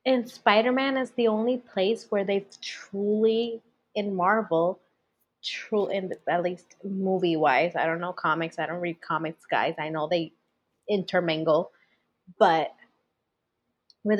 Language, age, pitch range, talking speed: English, 20-39, 170-205 Hz, 130 wpm